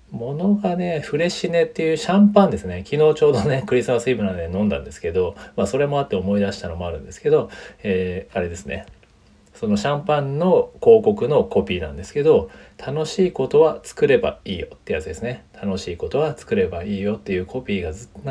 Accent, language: native, Japanese